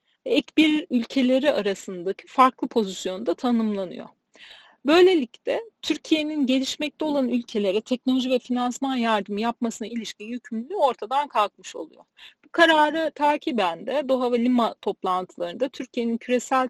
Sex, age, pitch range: female, 40-59, 225-295 Hz